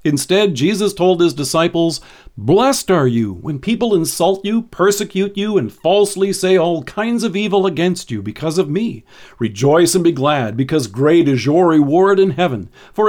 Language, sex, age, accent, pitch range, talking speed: English, male, 50-69, American, 130-195 Hz, 175 wpm